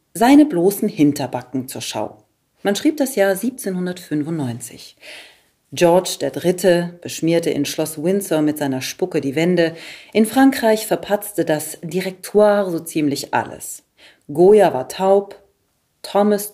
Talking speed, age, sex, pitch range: 120 wpm, 40-59, female, 150-210 Hz